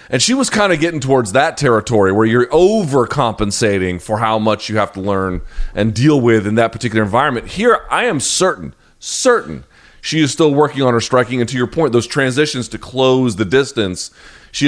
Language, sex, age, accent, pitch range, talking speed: English, male, 30-49, American, 115-180 Hz, 200 wpm